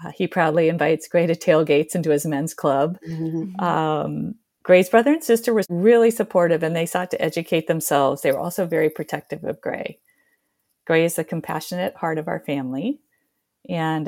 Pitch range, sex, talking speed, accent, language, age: 150-175 Hz, female, 170 wpm, American, English, 50-69